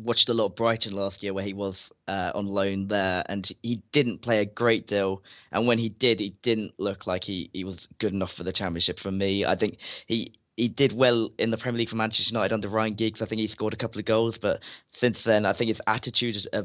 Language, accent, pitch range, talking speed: English, British, 100-115 Hz, 260 wpm